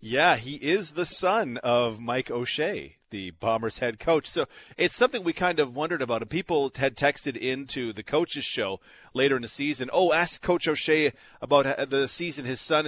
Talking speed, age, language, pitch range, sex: 185 wpm, 40-59, English, 120-150 Hz, male